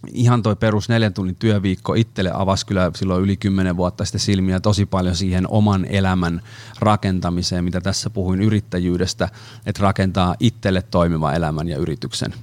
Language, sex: Finnish, male